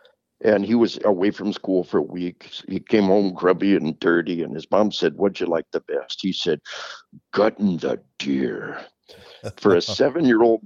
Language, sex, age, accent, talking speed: English, male, 60-79, American, 180 wpm